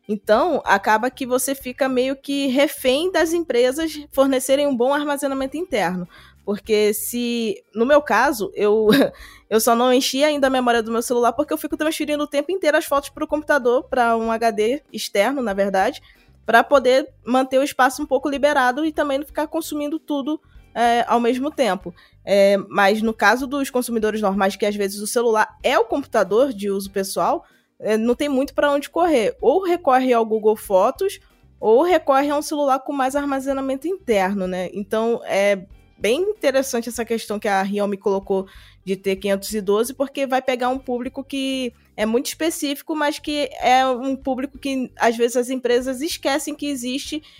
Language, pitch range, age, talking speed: Portuguese, 225-280 Hz, 20-39, 175 wpm